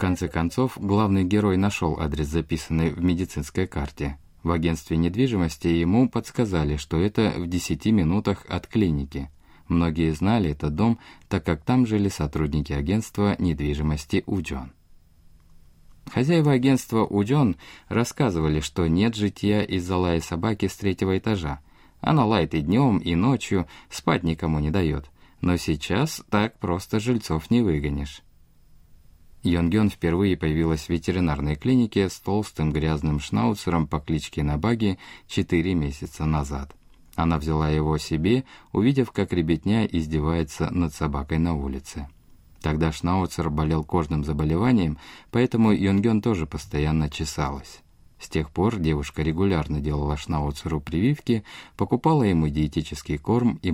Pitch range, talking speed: 75-100 Hz, 130 wpm